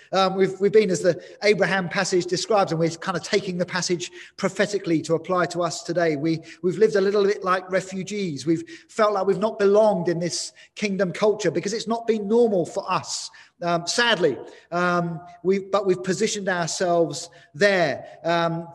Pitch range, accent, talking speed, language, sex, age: 180-220 Hz, British, 180 wpm, English, male, 30-49